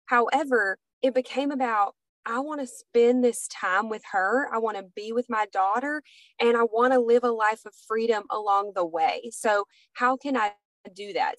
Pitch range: 215-275 Hz